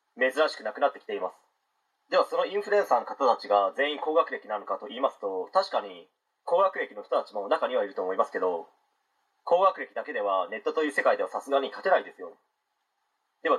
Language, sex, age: Japanese, male, 30-49